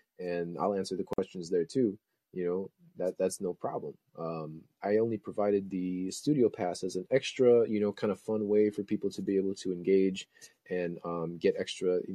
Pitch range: 90-110 Hz